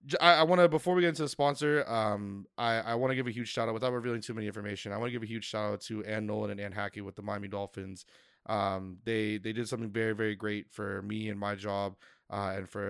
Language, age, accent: English, 20-39, American